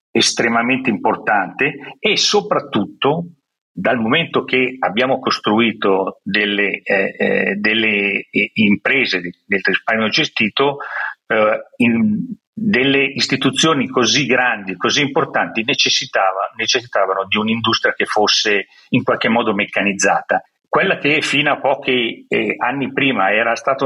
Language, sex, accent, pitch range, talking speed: Italian, male, native, 110-160 Hz, 115 wpm